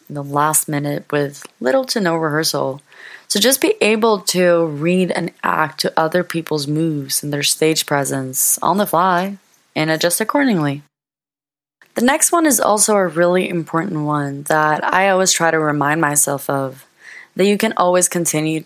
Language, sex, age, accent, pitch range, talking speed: English, female, 20-39, American, 145-190 Hz, 165 wpm